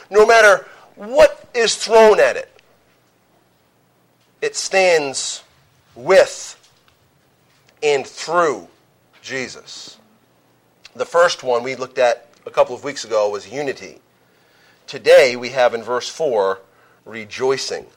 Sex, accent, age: male, American, 40-59